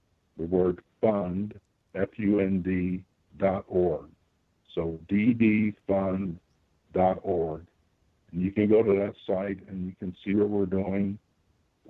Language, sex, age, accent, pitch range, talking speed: English, male, 60-79, American, 85-95 Hz, 110 wpm